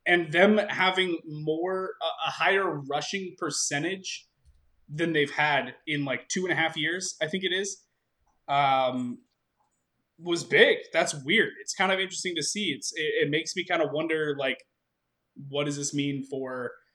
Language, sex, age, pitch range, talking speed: English, male, 20-39, 125-175 Hz, 165 wpm